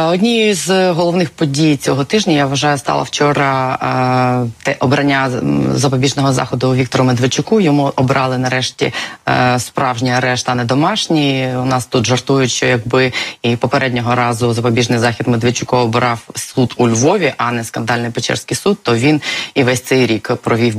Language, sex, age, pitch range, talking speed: Ukrainian, female, 20-39, 120-140 Hz, 155 wpm